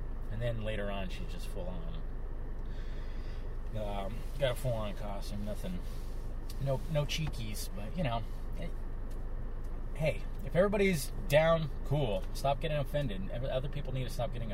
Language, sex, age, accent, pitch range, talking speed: English, male, 30-49, American, 95-120 Hz, 135 wpm